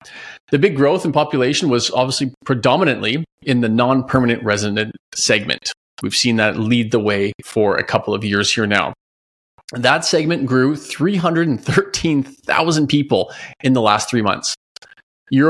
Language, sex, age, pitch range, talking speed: English, male, 30-49, 110-145 Hz, 145 wpm